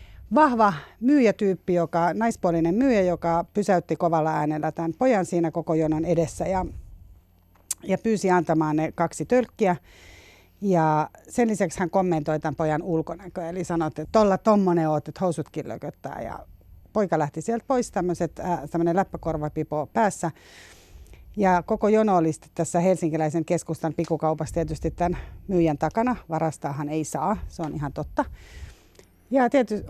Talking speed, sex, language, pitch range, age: 135 wpm, female, Finnish, 150-195 Hz, 30-49